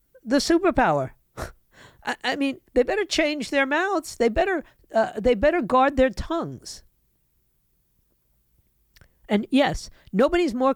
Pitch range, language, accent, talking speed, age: 165-235 Hz, English, American, 115 wpm, 50-69